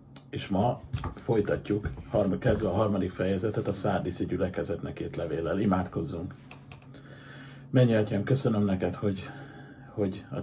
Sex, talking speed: male, 115 wpm